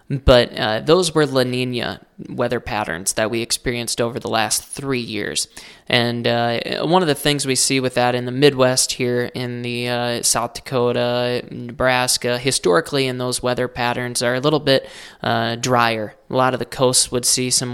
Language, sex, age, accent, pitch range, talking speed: English, male, 20-39, American, 120-135 Hz, 185 wpm